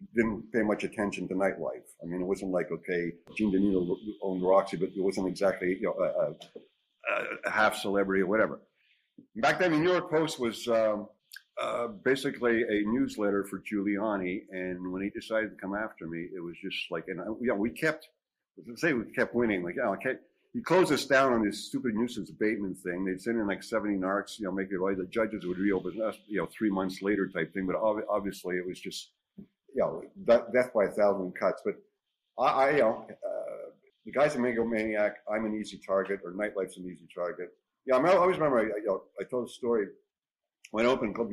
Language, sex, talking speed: English, male, 225 wpm